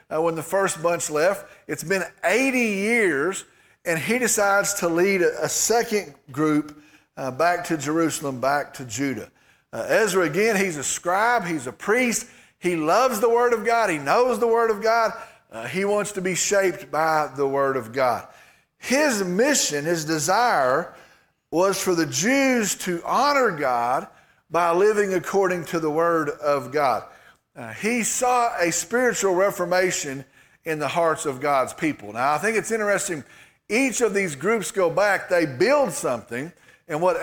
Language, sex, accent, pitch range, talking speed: English, male, American, 160-225 Hz, 170 wpm